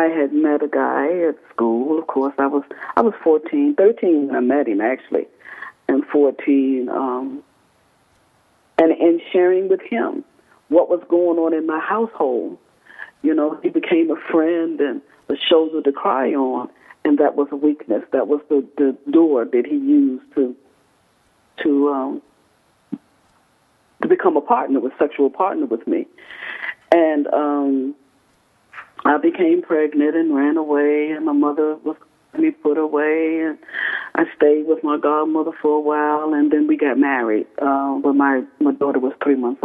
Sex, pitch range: female, 140-210 Hz